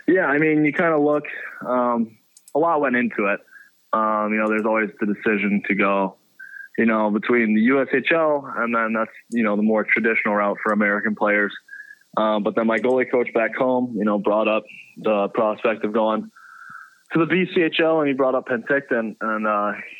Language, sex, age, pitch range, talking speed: English, male, 20-39, 105-120 Hz, 195 wpm